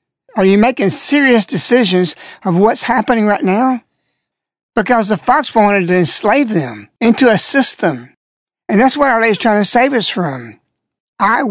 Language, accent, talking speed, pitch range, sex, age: English, American, 160 wpm, 185-240 Hz, male, 60-79